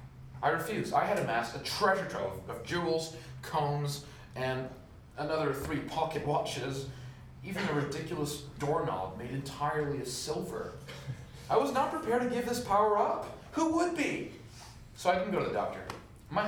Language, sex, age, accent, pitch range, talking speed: English, male, 30-49, American, 120-180 Hz, 160 wpm